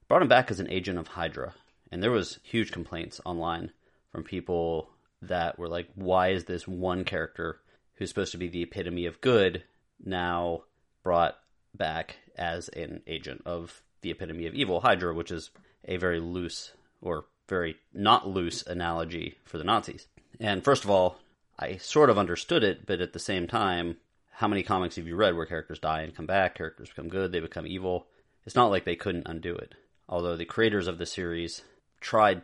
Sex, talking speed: male, 190 wpm